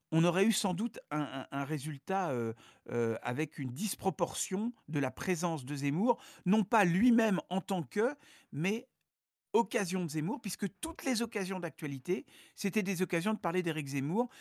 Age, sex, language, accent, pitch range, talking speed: 50-69, male, French, French, 130-190 Hz, 170 wpm